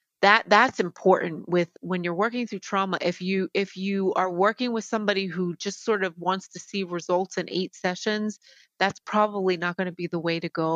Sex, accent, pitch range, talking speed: female, American, 180-210 Hz, 210 wpm